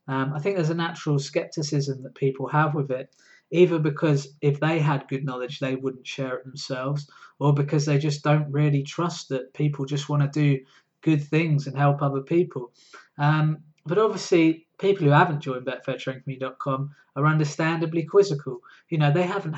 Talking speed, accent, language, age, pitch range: 180 wpm, British, English, 20-39, 135-160 Hz